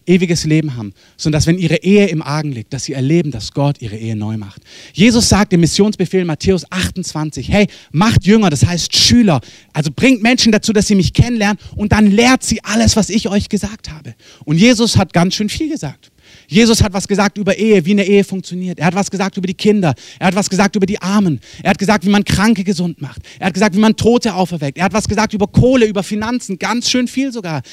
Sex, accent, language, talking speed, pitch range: male, German, German, 235 wpm, 165-220 Hz